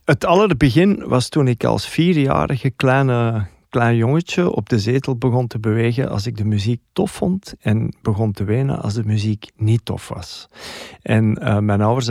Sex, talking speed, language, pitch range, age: male, 180 wpm, Dutch, 105-135 Hz, 50-69